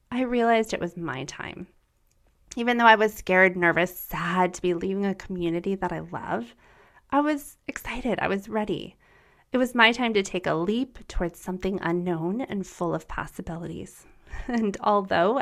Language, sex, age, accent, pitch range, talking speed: English, female, 20-39, American, 185-255 Hz, 170 wpm